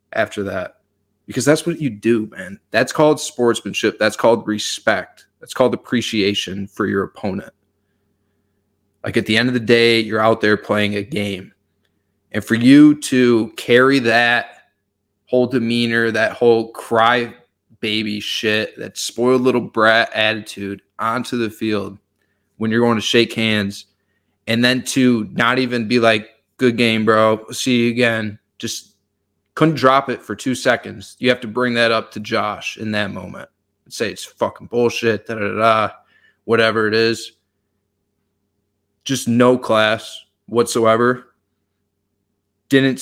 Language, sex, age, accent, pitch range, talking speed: English, male, 20-39, American, 100-120 Hz, 145 wpm